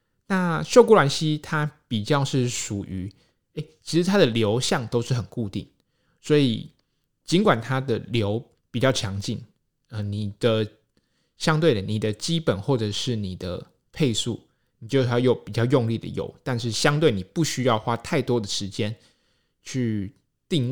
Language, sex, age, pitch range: Chinese, male, 20-39, 105-135 Hz